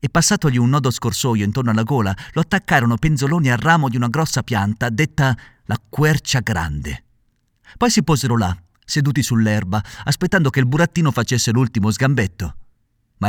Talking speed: 160 wpm